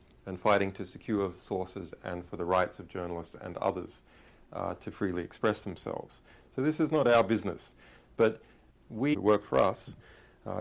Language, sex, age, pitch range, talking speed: English, male, 40-59, 90-110 Hz, 170 wpm